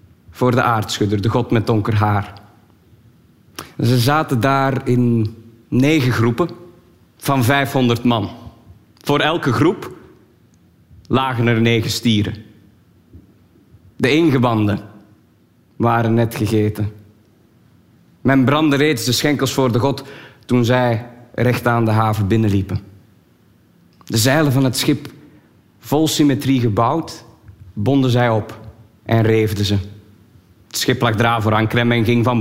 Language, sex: Dutch, male